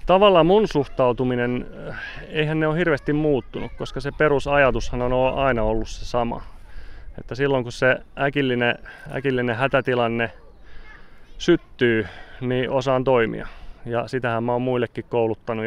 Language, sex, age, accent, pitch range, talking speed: Finnish, male, 30-49, native, 115-130 Hz, 125 wpm